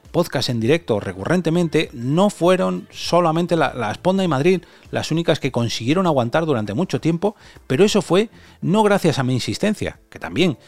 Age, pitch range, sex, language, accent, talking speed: 30-49, 110-165 Hz, male, Spanish, Spanish, 175 wpm